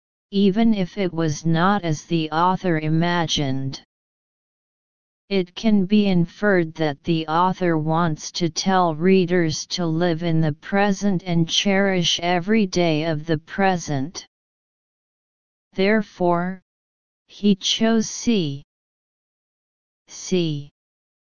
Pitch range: 160-190 Hz